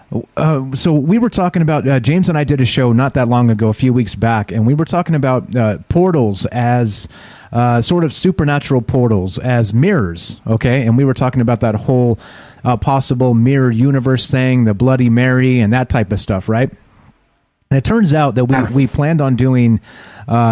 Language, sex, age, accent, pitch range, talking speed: English, male, 30-49, American, 110-135 Hz, 200 wpm